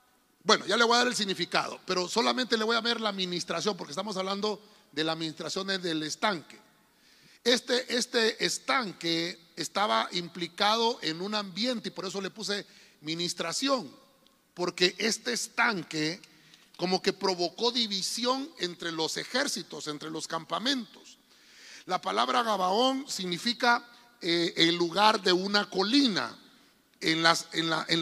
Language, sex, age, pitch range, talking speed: Spanish, male, 40-59, 170-235 Hz, 140 wpm